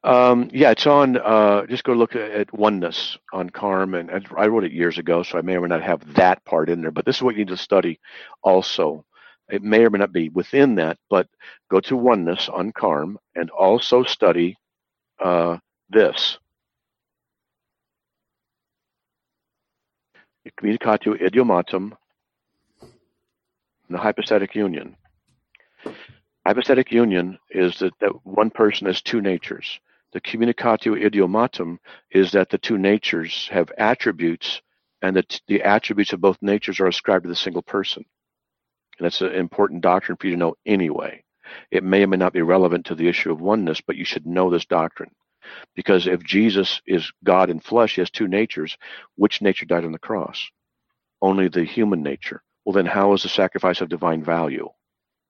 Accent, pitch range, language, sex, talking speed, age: American, 90-110 Hz, English, male, 170 wpm, 60-79